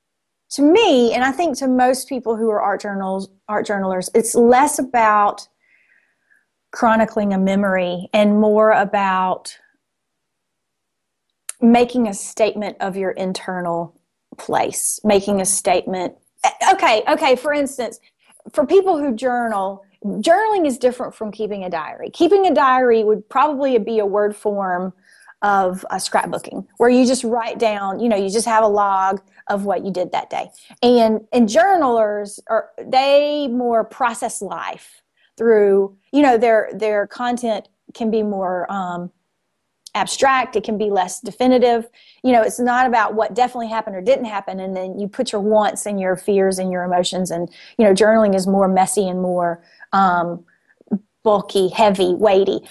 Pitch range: 195-245 Hz